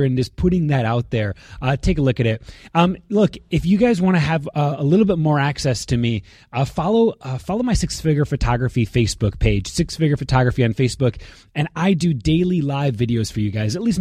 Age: 20-39